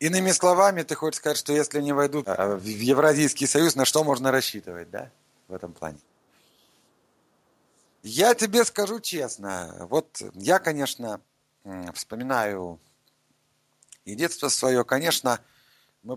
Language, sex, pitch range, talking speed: Russian, male, 110-170 Hz, 125 wpm